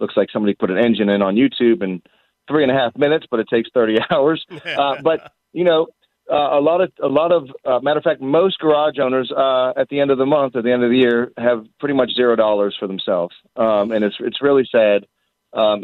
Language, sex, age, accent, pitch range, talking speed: English, male, 40-59, American, 105-125 Hz, 245 wpm